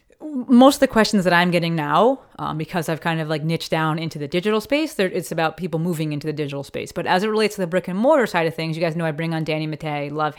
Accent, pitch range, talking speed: American, 160-195 Hz, 285 wpm